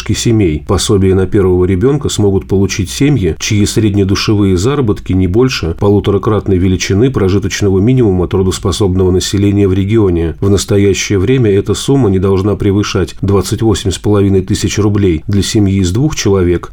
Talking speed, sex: 135 wpm, male